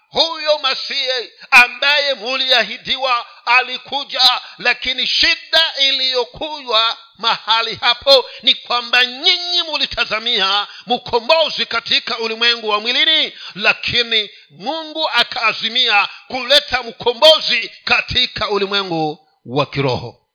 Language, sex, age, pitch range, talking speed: Swahili, male, 50-69, 225-280 Hz, 85 wpm